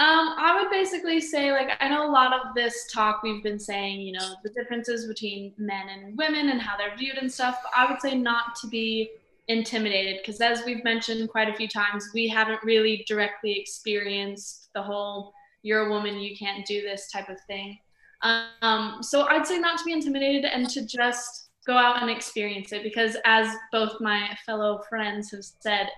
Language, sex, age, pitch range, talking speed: English, female, 10-29, 210-250 Hz, 200 wpm